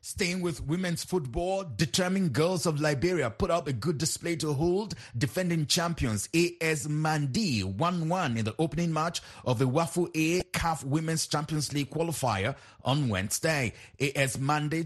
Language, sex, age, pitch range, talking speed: English, male, 30-49, 125-160 Hz, 150 wpm